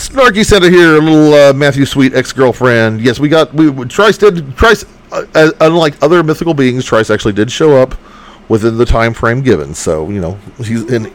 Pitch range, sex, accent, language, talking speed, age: 115-155 Hz, male, American, English, 200 wpm, 40-59